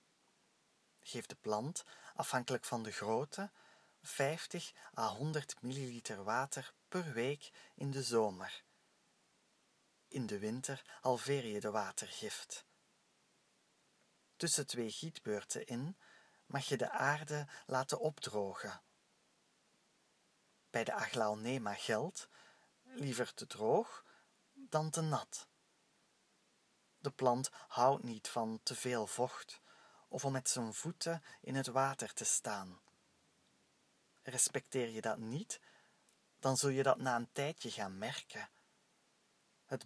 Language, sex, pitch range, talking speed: Dutch, male, 120-150 Hz, 115 wpm